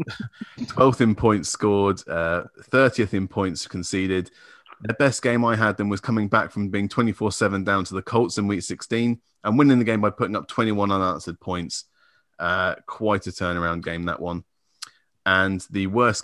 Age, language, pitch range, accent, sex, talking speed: 30-49, English, 95-110 Hz, British, male, 175 wpm